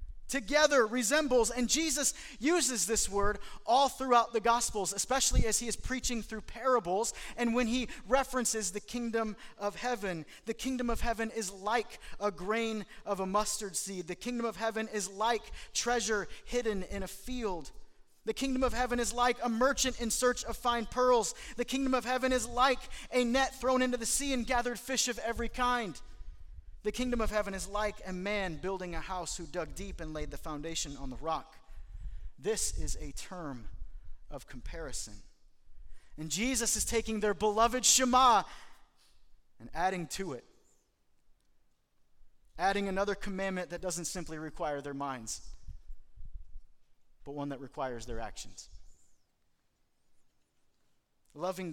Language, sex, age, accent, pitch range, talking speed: English, male, 30-49, American, 150-245 Hz, 155 wpm